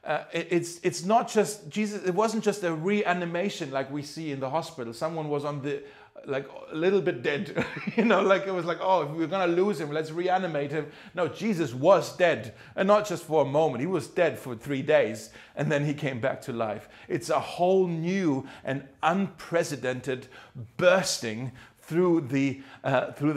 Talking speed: 195 wpm